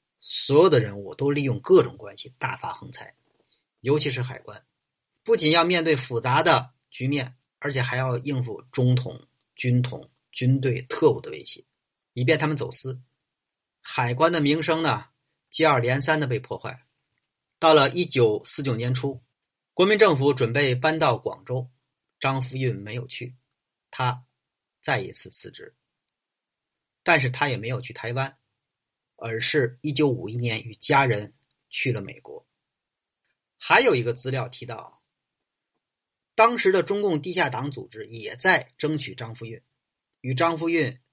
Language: Chinese